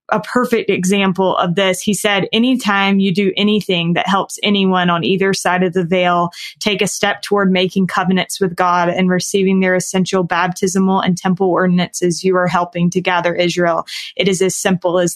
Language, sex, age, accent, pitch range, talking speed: English, female, 20-39, American, 185-210 Hz, 185 wpm